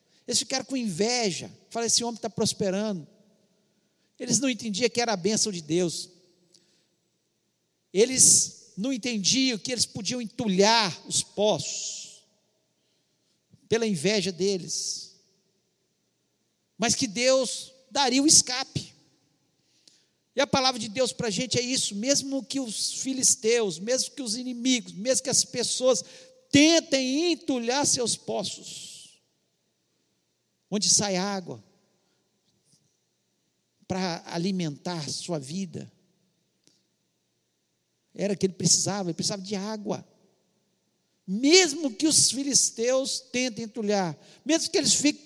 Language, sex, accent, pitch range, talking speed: Portuguese, male, Brazilian, 195-255 Hz, 115 wpm